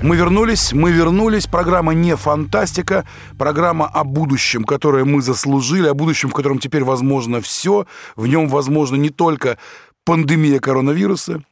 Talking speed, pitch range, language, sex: 140 wpm, 135-165 Hz, Russian, male